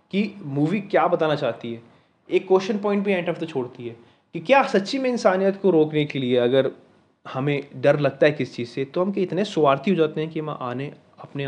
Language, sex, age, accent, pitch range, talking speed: Hindi, male, 20-39, native, 125-170 Hz, 230 wpm